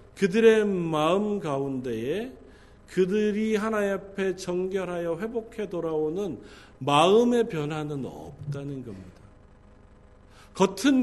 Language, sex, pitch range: Korean, male, 140-195 Hz